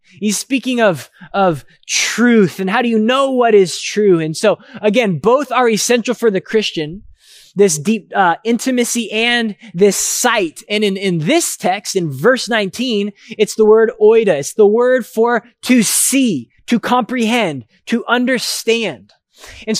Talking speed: 160 wpm